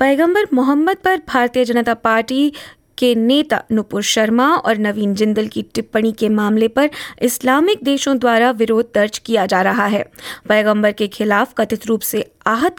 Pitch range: 210-250 Hz